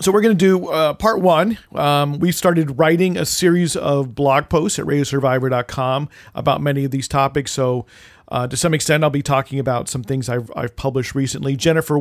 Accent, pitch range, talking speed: American, 125-160 Hz, 200 wpm